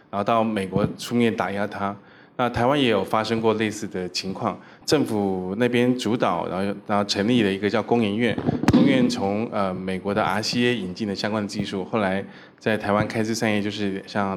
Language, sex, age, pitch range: Chinese, male, 20-39, 100-115 Hz